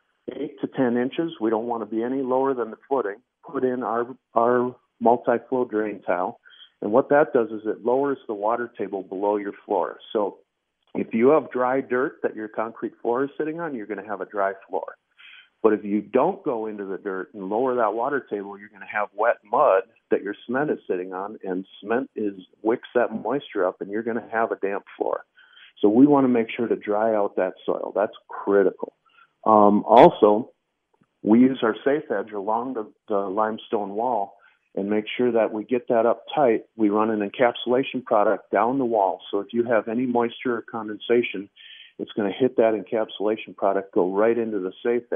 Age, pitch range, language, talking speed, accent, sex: 50-69, 105-125 Hz, English, 205 wpm, American, male